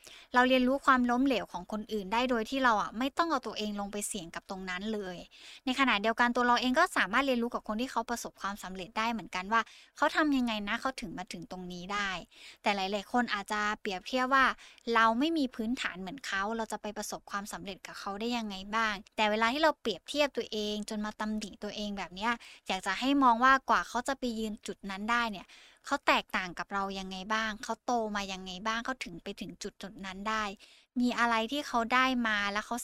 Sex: female